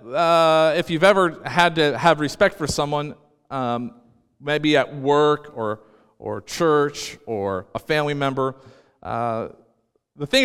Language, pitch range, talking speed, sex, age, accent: English, 125-160 Hz, 140 wpm, male, 40-59, American